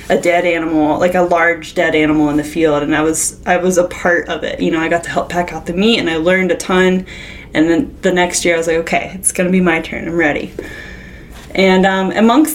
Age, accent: 10-29, American